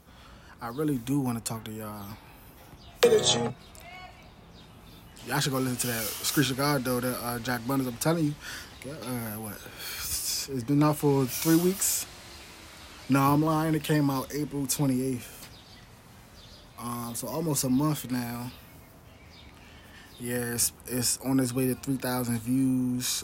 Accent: American